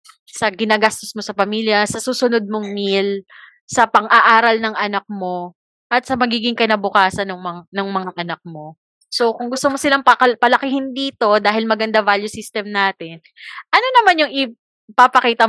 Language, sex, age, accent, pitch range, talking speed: Filipino, female, 20-39, native, 190-245 Hz, 150 wpm